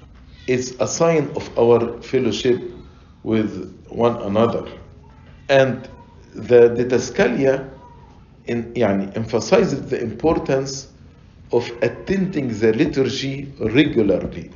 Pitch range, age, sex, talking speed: 105-145 Hz, 50-69, male, 90 wpm